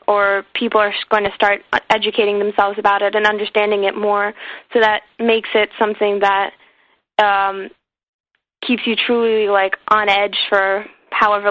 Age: 10-29